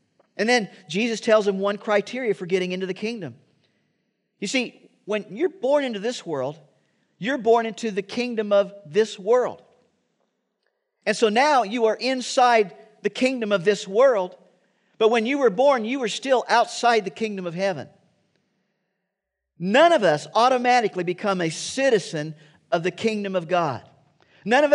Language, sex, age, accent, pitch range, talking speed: English, male, 50-69, American, 190-240 Hz, 160 wpm